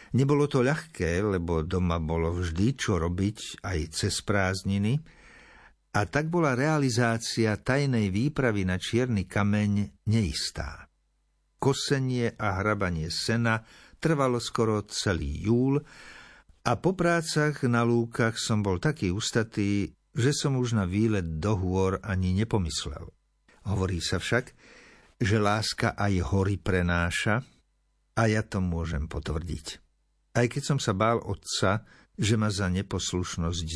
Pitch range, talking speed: 95-125 Hz, 125 wpm